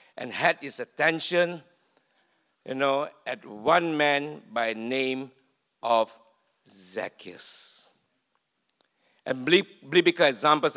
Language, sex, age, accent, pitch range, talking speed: English, male, 60-79, Malaysian, 130-185 Hz, 90 wpm